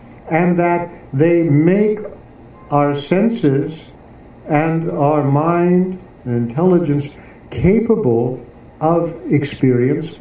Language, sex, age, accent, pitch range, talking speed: English, male, 60-79, American, 130-180 Hz, 80 wpm